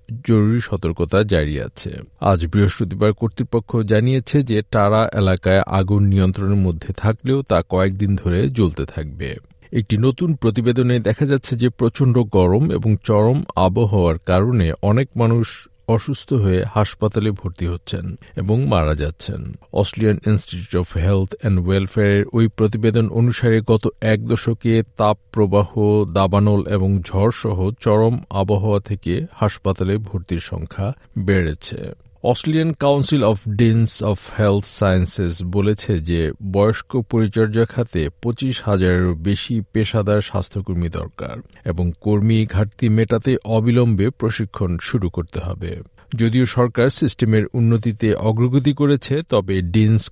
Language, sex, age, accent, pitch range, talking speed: Bengali, male, 50-69, native, 95-115 Hz, 105 wpm